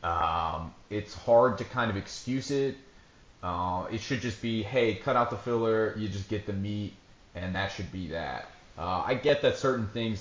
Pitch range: 95-115 Hz